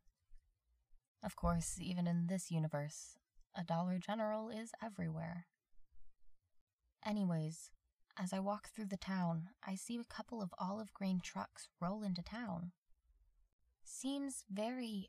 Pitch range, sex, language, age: 155-200 Hz, female, English, 20-39